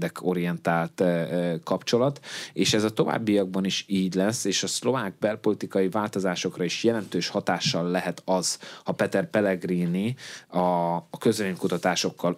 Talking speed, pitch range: 130 wpm, 90-100 Hz